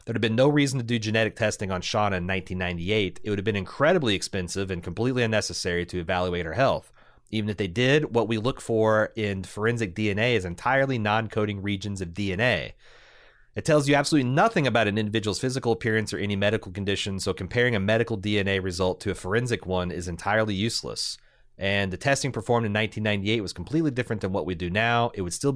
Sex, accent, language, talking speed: male, American, English, 205 wpm